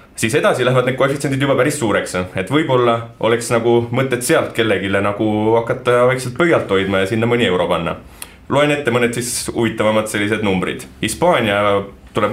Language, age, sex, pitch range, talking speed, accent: English, 30-49, male, 100-135 Hz, 165 wpm, Finnish